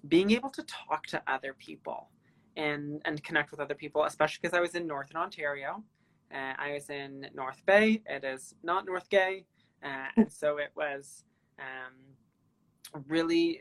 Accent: American